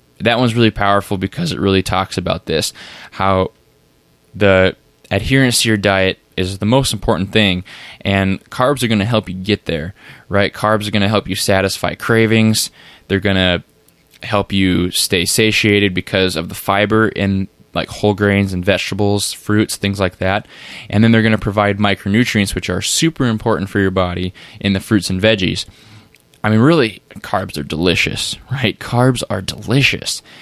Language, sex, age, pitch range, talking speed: English, male, 10-29, 95-110 Hz, 175 wpm